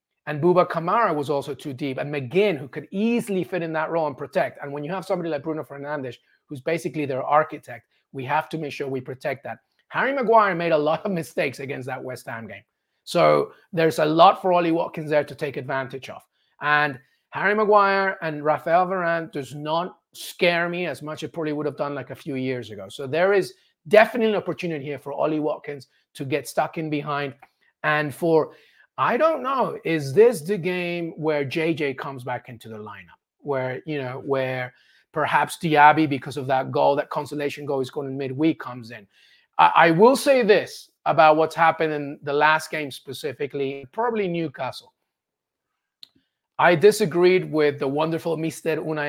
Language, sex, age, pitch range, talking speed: English, male, 30-49, 140-170 Hz, 190 wpm